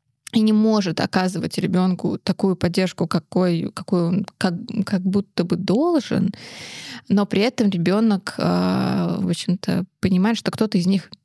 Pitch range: 180-205 Hz